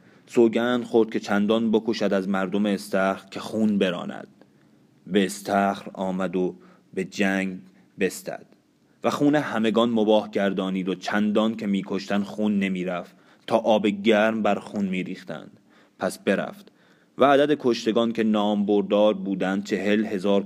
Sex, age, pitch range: male, 30-49, 95-105 Hz